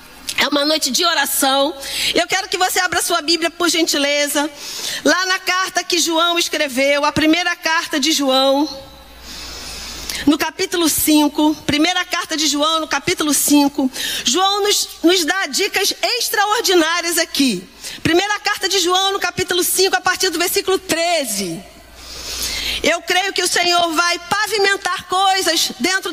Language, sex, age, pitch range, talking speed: Portuguese, female, 40-59, 315-375 Hz, 145 wpm